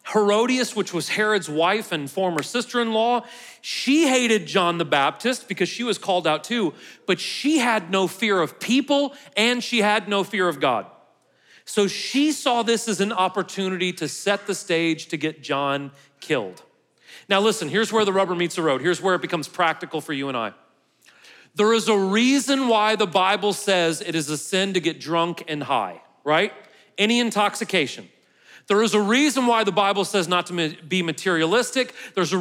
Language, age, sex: English, 40-59, male